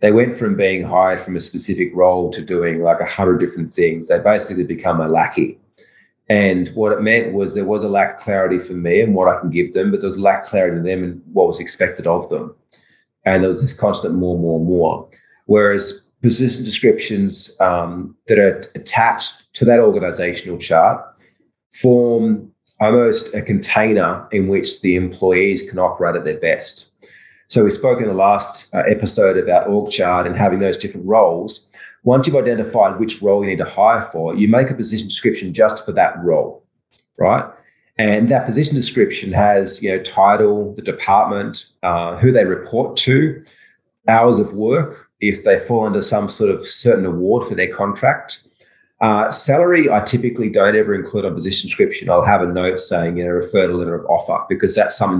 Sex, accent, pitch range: male, Australian, 90-120 Hz